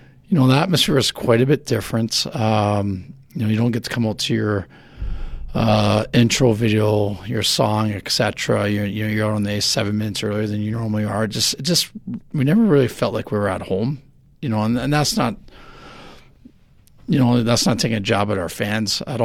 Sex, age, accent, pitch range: male, 40-59, American, 100-120 Hz